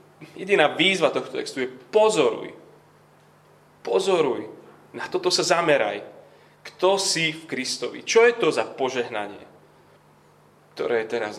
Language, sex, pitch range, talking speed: Slovak, male, 115-170 Hz, 120 wpm